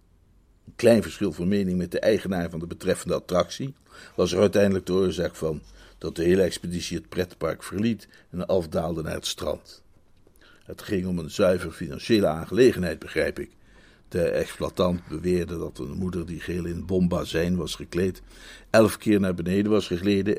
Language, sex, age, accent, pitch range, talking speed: Dutch, male, 60-79, Dutch, 85-100 Hz, 170 wpm